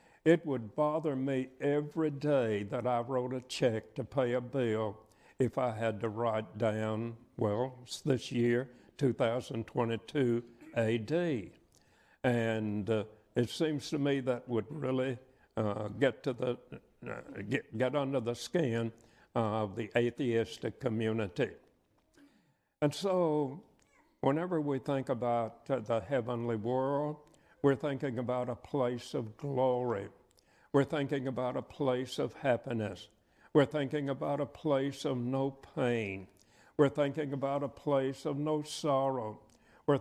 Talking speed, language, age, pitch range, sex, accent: 130 wpm, English, 60-79, 120-140 Hz, male, American